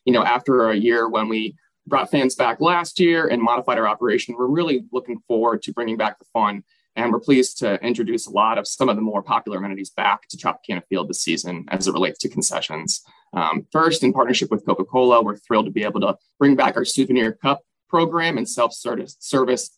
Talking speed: 210 wpm